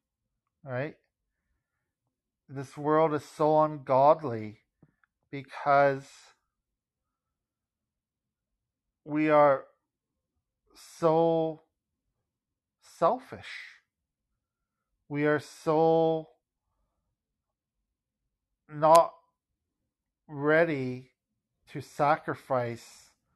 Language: English